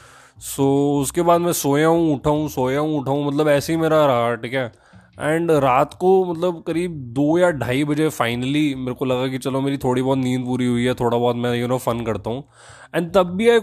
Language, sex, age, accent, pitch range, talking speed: Hindi, male, 20-39, native, 125-160 Hz, 225 wpm